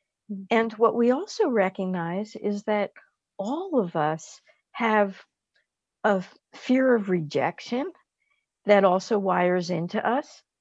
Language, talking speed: English, 115 wpm